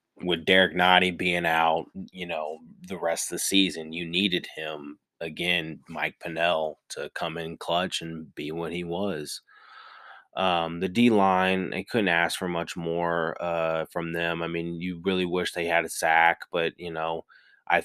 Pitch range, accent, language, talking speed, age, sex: 80-90 Hz, American, English, 180 wpm, 30-49, male